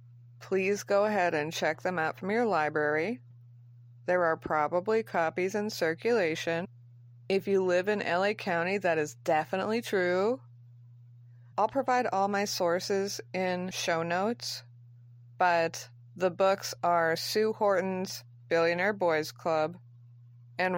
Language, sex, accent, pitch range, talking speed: English, female, American, 120-195 Hz, 125 wpm